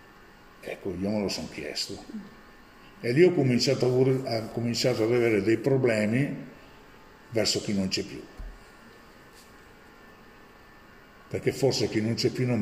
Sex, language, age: male, Italian, 50-69